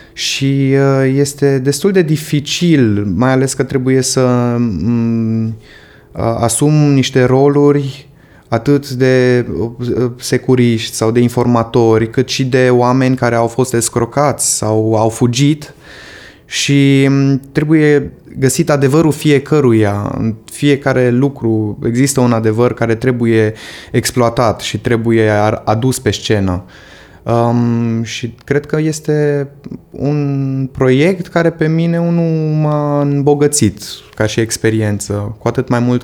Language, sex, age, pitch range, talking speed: Romanian, male, 20-39, 115-145 Hz, 115 wpm